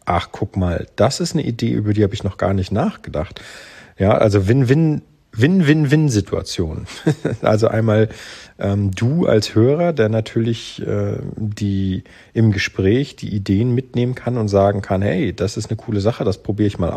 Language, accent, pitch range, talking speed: German, German, 100-120 Hz, 170 wpm